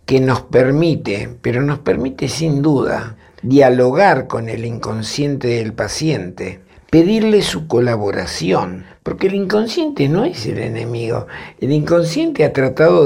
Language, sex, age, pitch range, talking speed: Spanish, male, 60-79, 120-160 Hz, 130 wpm